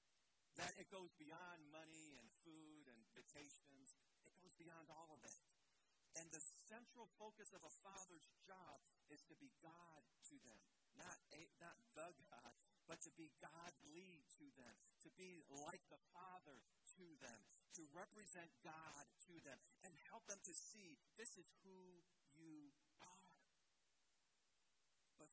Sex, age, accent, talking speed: male, 50-69, American, 145 wpm